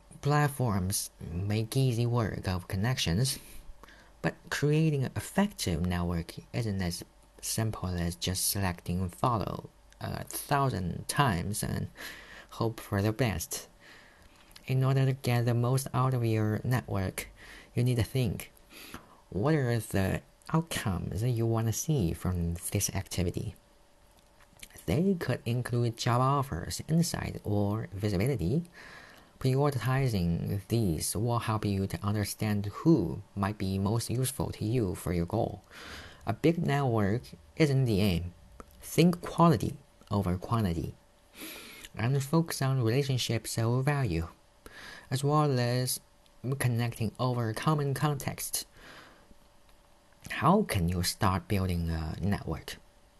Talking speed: 120 wpm